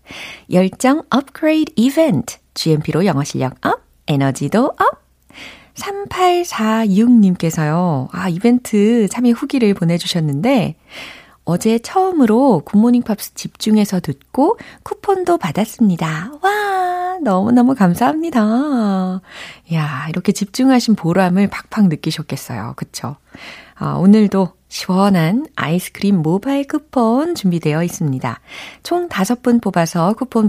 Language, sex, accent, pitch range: Korean, female, native, 165-265 Hz